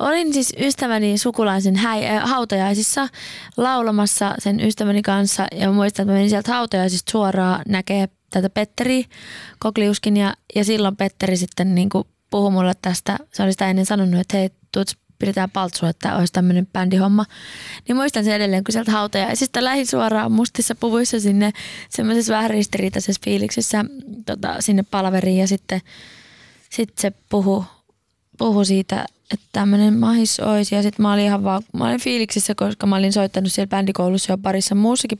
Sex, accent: female, native